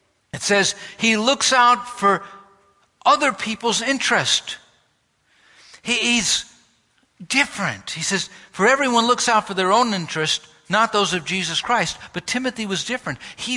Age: 60-79